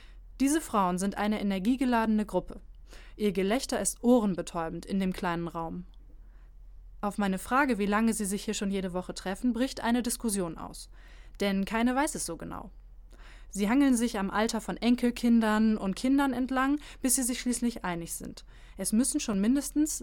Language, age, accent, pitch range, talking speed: German, 20-39, German, 185-245 Hz, 170 wpm